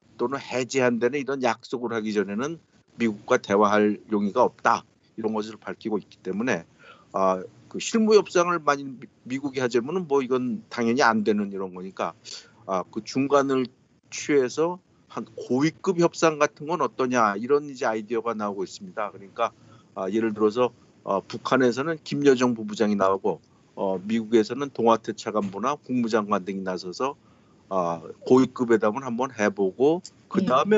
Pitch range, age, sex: 110-145 Hz, 50-69, male